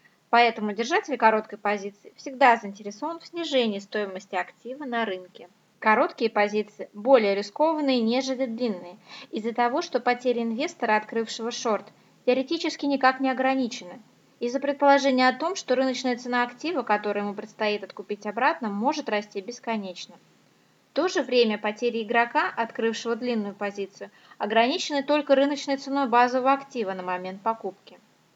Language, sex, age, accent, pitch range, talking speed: Russian, female, 20-39, native, 200-260 Hz, 135 wpm